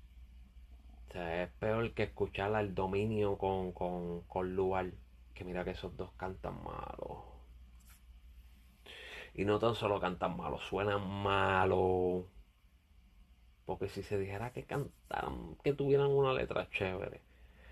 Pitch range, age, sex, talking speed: 65-110 Hz, 30-49, male, 130 wpm